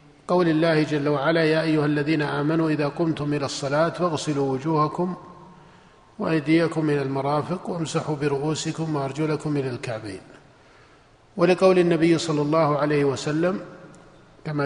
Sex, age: male, 50-69